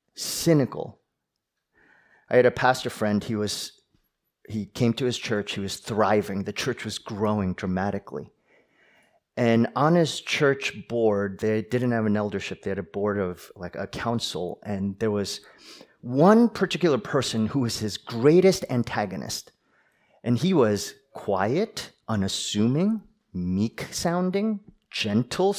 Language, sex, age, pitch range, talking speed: English, male, 30-49, 105-150 Hz, 135 wpm